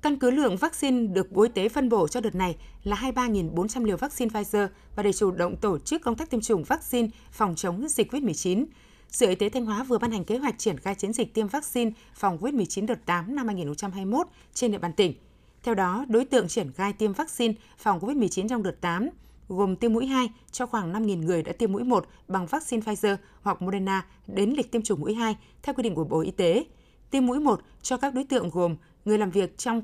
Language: Vietnamese